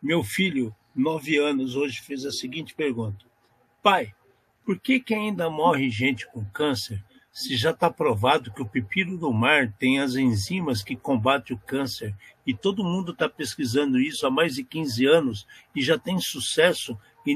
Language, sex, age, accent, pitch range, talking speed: Portuguese, male, 60-79, Brazilian, 120-165 Hz, 175 wpm